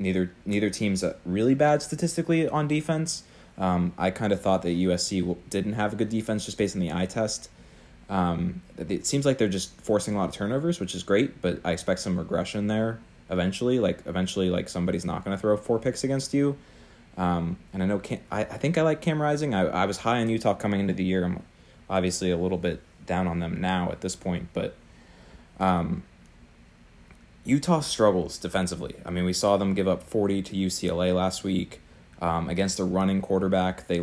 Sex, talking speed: male, 205 wpm